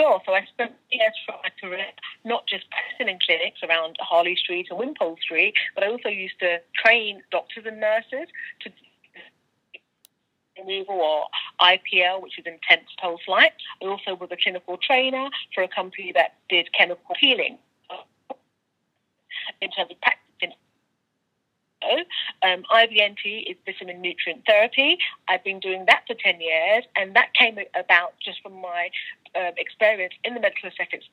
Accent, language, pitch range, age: British, English, 180-245 Hz, 40-59